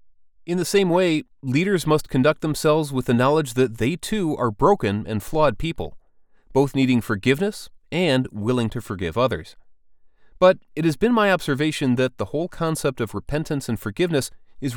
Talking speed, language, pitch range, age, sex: 170 wpm, English, 115-165 Hz, 30-49, male